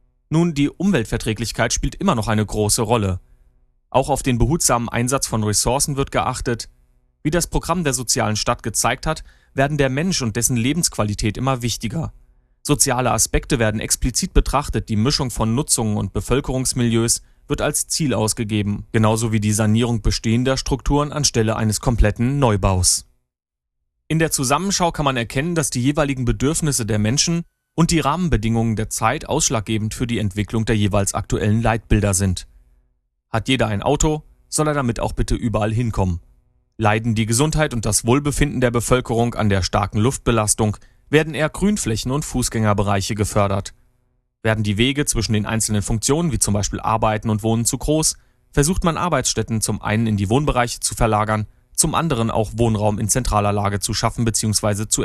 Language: German